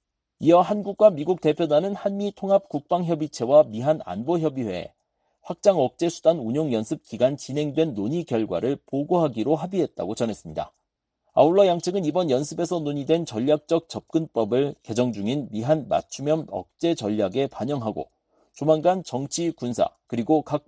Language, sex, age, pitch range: Korean, male, 40-59, 130-175 Hz